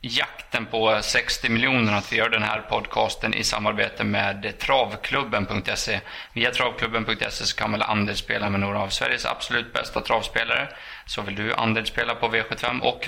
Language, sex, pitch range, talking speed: Swedish, male, 105-120 Hz, 165 wpm